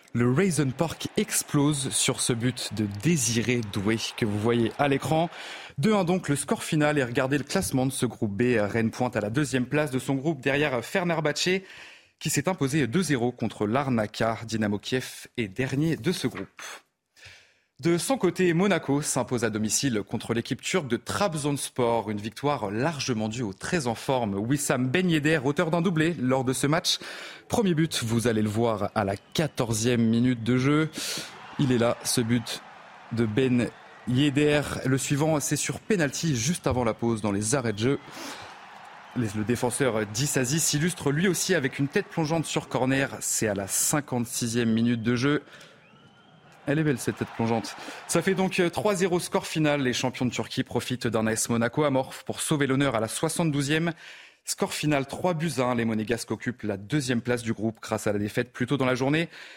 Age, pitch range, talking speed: 30-49, 115-155 Hz, 185 wpm